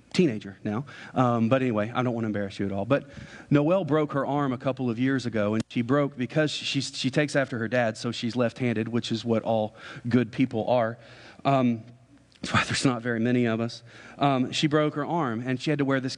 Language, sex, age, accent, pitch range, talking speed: English, male, 40-59, American, 120-145 Hz, 230 wpm